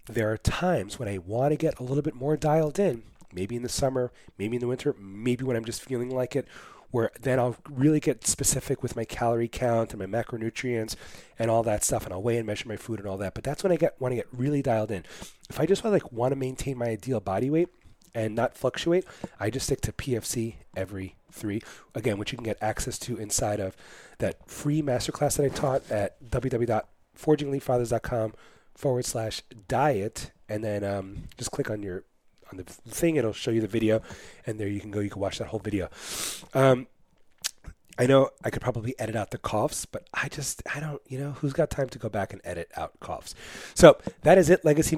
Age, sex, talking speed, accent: 30-49, male, 225 wpm, American